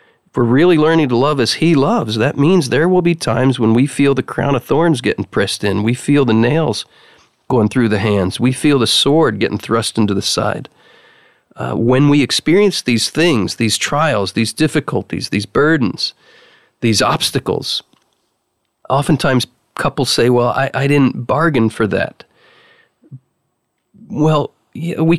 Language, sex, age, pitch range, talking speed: English, male, 40-59, 115-155 Hz, 160 wpm